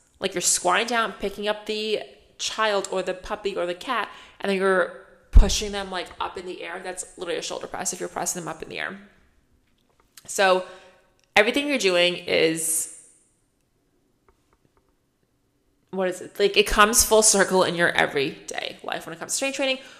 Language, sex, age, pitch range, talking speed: English, female, 20-39, 180-230 Hz, 180 wpm